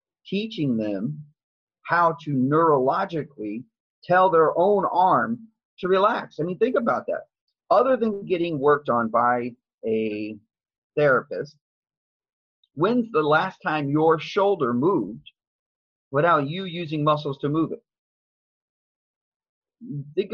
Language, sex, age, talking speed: English, male, 30-49, 115 wpm